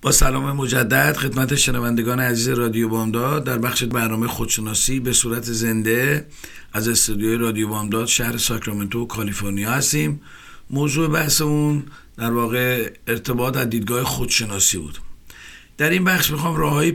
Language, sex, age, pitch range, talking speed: Persian, male, 50-69, 115-150 Hz, 130 wpm